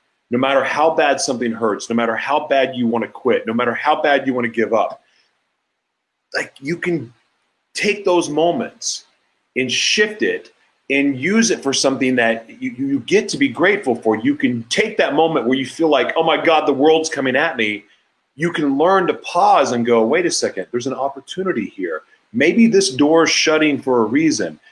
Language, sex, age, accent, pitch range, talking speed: English, male, 30-49, American, 130-215 Hz, 205 wpm